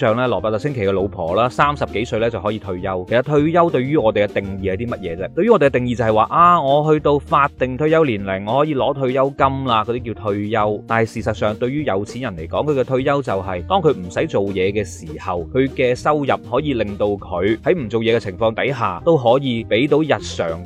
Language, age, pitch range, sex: Chinese, 20-39, 105-130 Hz, male